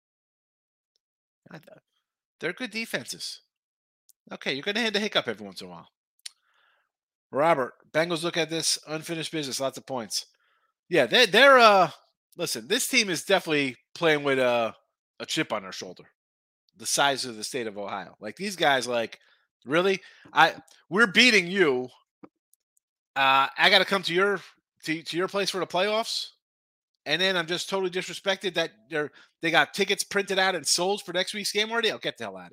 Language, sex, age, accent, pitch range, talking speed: English, male, 30-49, American, 145-205 Hz, 180 wpm